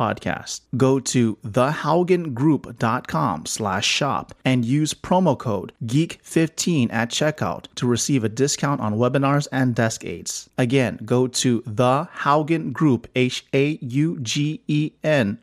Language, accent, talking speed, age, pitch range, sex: English, American, 130 wpm, 30-49, 115-150 Hz, male